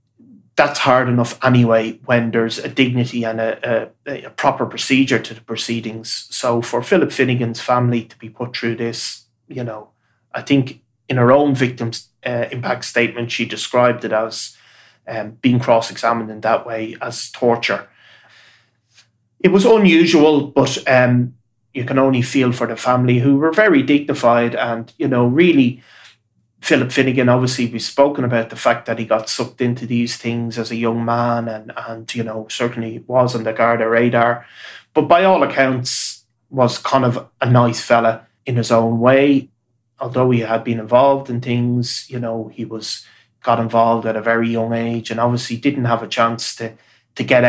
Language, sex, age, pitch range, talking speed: English, male, 30-49, 115-125 Hz, 175 wpm